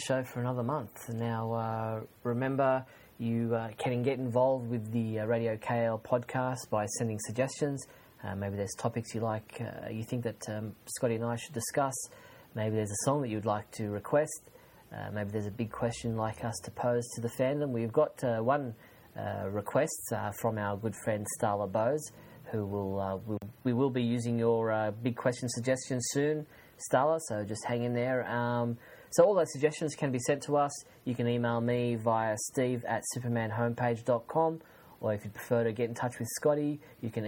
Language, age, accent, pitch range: English, 30-49, Australian, 115-130 Hz